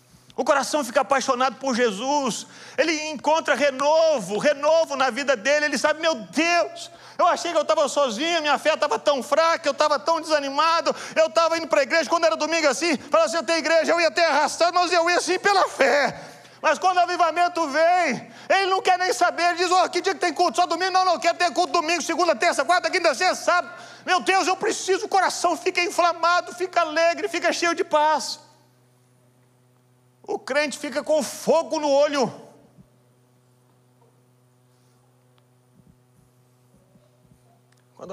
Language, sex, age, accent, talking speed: Portuguese, male, 40-59, Brazilian, 175 wpm